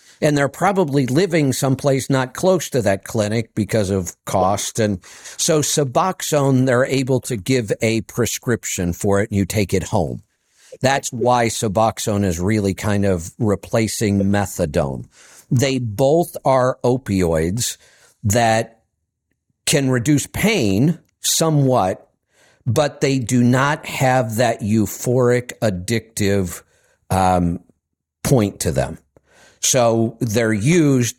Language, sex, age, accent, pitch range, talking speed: English, male, 50-69, American, 100-130 Hz, 120 wpm